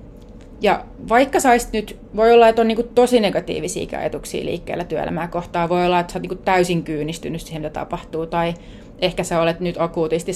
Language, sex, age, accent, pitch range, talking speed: Finnish, female, 30-49, native, 170-200 Hz, 185 wpm